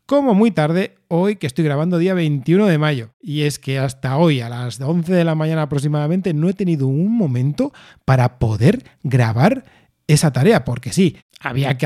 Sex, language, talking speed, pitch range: male, Spanish, 185 wpm, 135-180 Hz